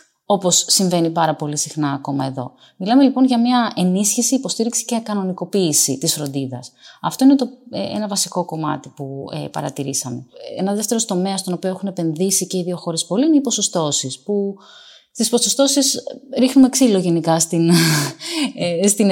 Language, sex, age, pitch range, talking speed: Greek, female, 30-49, 165-225 Hz, 160 wpm